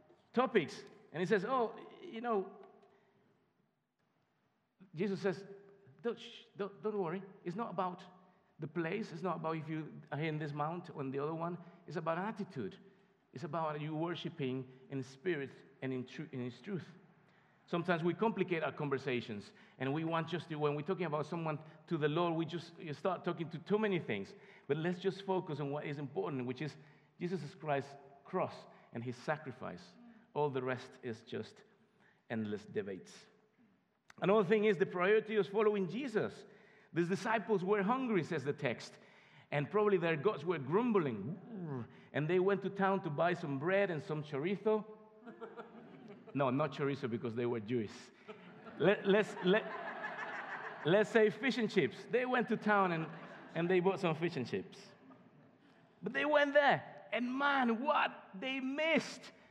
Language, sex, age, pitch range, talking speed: English, male, 50-69, 150-210 Hz, 165 wpm